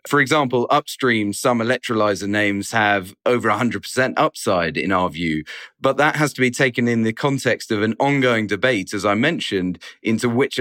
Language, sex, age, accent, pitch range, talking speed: English, male, 30-49, British, 100-125 Hz, 175 wpm